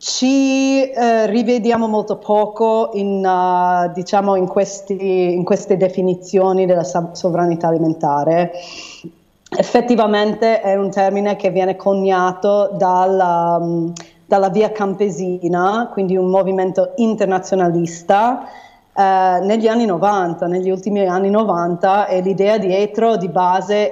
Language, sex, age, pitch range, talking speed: Italian, female, 30-49, 175-200 Hz, 110 wpm